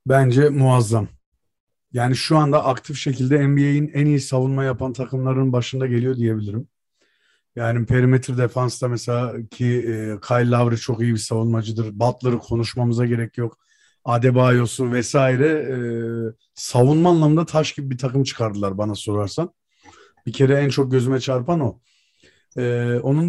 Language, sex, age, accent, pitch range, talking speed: Turkish, male, 50-69, native, 120-155 Hz, 130 wpm